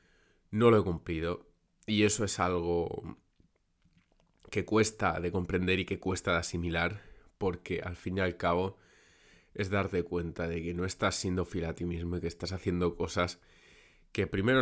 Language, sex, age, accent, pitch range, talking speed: Spanish, male, 20-39, Spanish, 85-100 Hz, 170 wpm